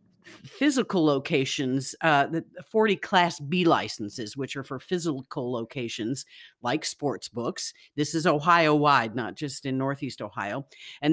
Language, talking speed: English, 140 wpm